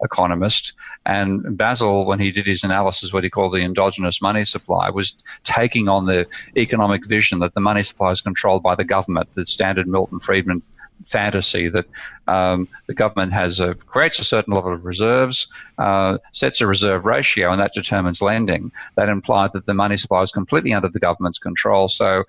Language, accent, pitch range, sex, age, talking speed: English, Australian, 95-110 Hz, male, 50-69, 185 wpm